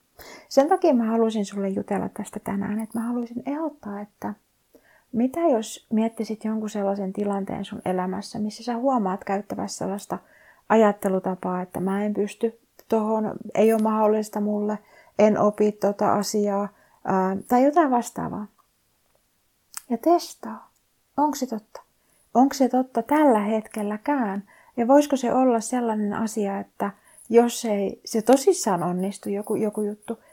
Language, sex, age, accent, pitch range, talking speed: Finnish, female, 30-49, native, 205-250 Hz, 135 wpm